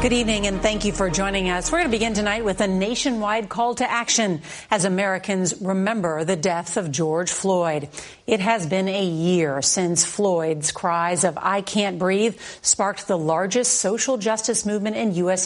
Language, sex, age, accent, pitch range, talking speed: English, female, 40-59, American, 175-225 Hz, 185 wpm